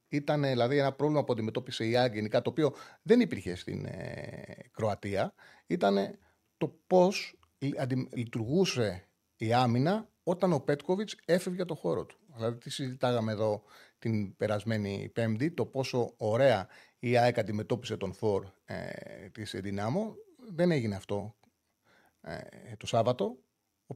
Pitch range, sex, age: 115-160 Hz, male, 30-49